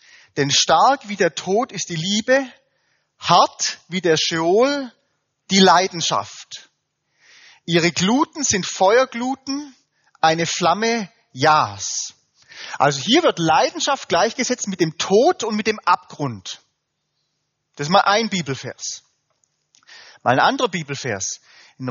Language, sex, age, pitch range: German, male, 30-49, 150-240 Hz